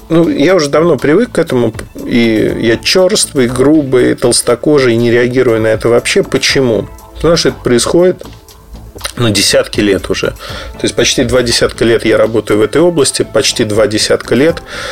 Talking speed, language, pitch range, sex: 175 wpm, Russian, 115-150 Hz, male